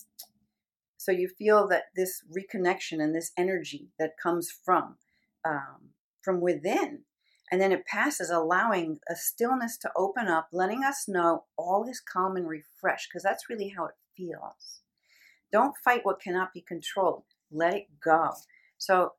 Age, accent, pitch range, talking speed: 50-69, American, 170-220 Hz, 155 wpm